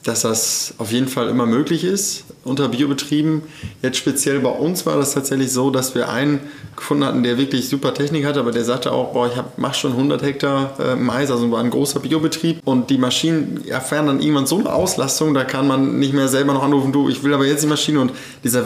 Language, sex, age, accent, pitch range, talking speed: German, male, 20-39, German, 120-140 Hz, 220 wpm